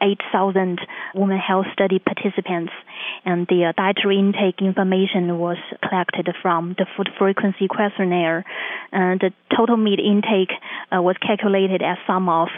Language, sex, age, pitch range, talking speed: English, female, 20-39, 185-205 Hz, 125 wpm